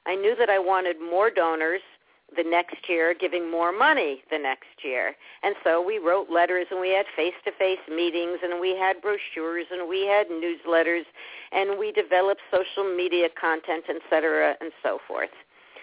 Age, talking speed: 50-69, 170 wpm